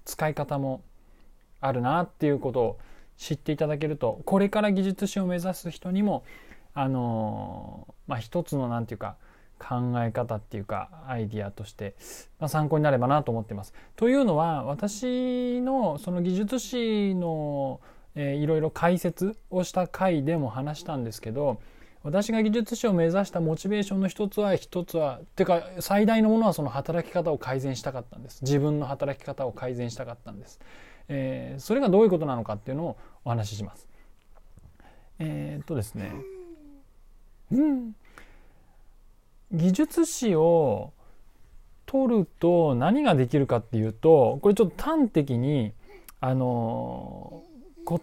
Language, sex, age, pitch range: Japanese, male, 20-39, 125-195 Hz